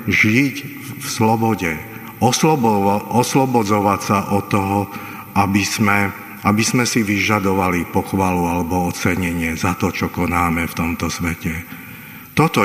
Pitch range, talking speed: 95-120 Hz, 115 wpm